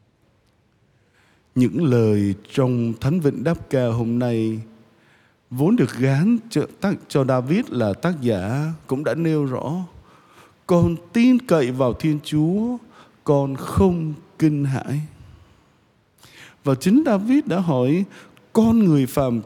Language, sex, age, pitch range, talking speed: Vietnamese, male, 20-39, 115-165 Hz, 125 wpm